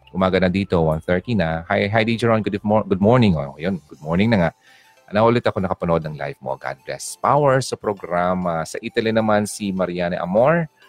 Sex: male